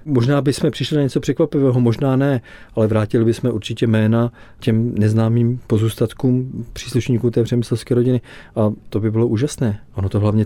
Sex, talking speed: male, 165 wpm